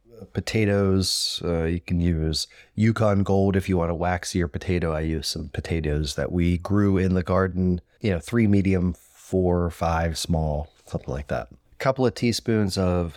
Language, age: English, 30-49